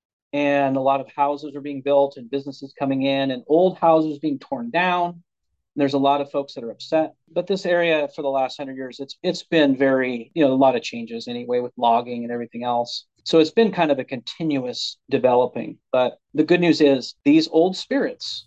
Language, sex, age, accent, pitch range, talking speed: English, male, 40-59, American, 135-160 Hz, 220 wpm